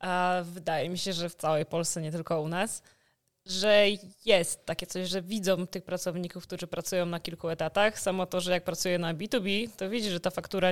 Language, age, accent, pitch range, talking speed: Polish, 20-39, native, 180-210 Hz, 205 wpm